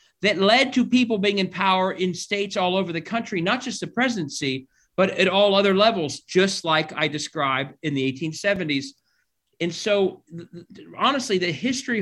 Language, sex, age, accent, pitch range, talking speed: English, male, 40-59, American, 150-195 Hz, 180 wpm